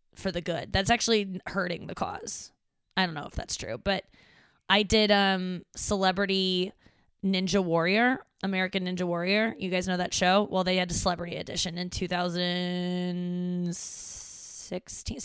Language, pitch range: English, 180-205 Hz